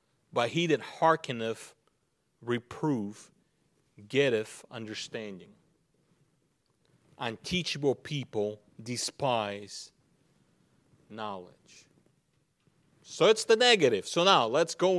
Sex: male